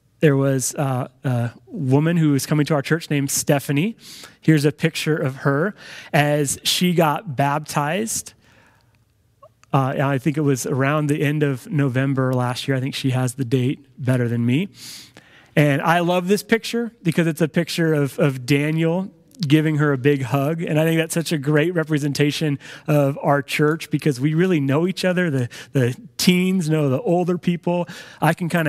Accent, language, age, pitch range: American, English, 30-49, 140-175 Hz